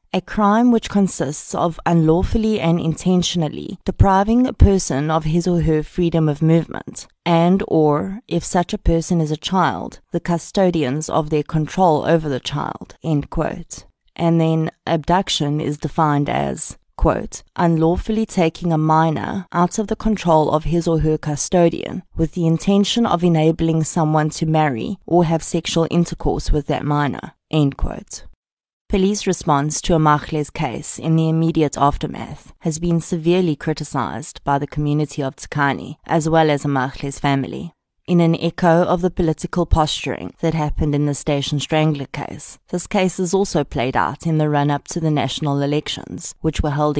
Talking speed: 160 wpm